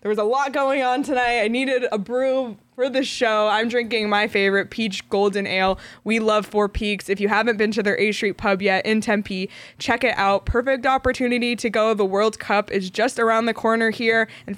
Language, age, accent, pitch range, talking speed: English, 20-39, American, 200-245 Hz, 220 wpm